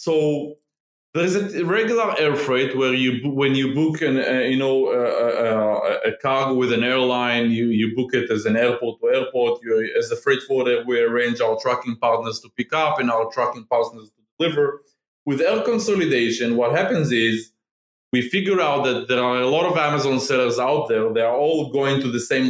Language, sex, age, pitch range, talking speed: English, male, 20-39, 125-160 Hz, 205 wpm